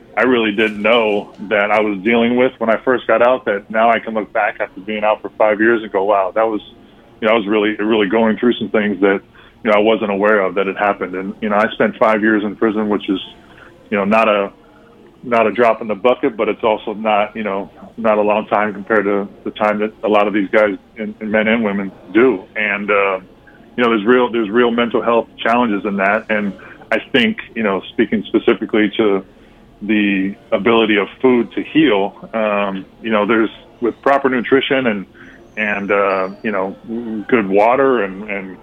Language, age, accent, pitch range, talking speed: English, 20-39, American, 100-115 Hz, 215 wpm